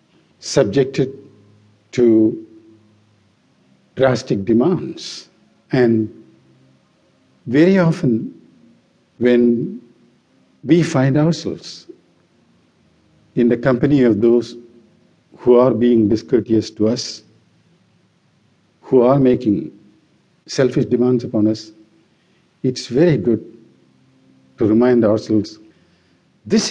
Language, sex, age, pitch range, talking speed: English, male, 50-69, 110-145 Hz, 80 wpm